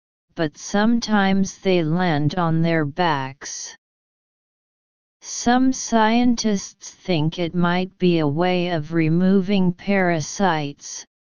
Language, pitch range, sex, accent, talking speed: English, 160-195 Hz, female, American, 95 wpm